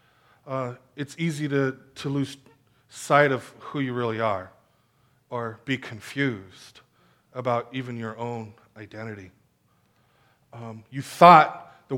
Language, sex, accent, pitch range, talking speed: English, male, American, 125-165 Hz, 125 wpm